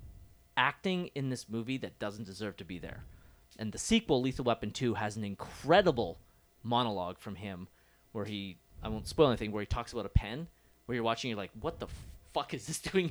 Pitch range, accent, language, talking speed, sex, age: 105-135 Hz, American, English, 205 wpm, male, 30-49